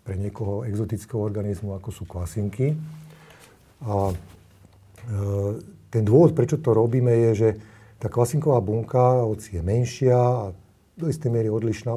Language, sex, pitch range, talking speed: Slovak, male, 100-125 Hz, 135 wpm